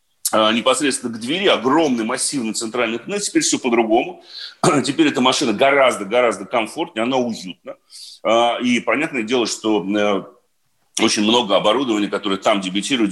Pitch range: 115-170 Hz